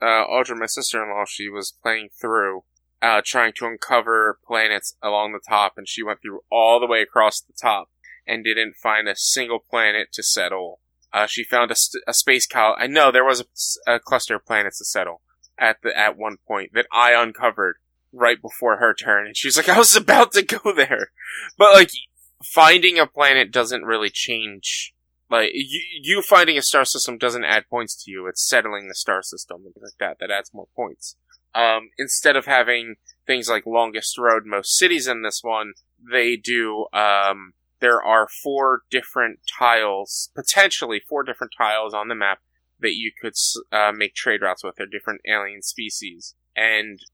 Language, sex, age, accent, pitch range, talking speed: English, male, 20-39, American, 105-125 Hz, 190 wpm